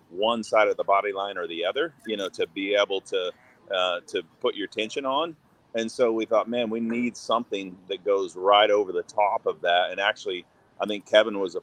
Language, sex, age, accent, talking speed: English, male, 30-49, American, 225 wpm